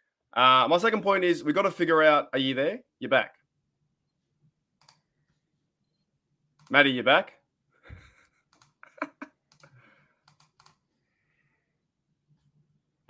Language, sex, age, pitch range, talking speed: English, male, 20-39, 130-155 Hz, 85 wpm